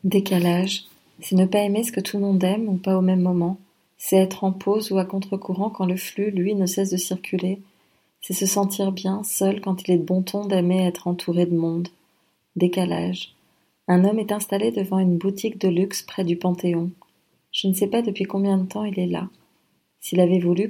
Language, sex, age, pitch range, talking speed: French, female, 40-59, 175-195 Hz, 215 wpm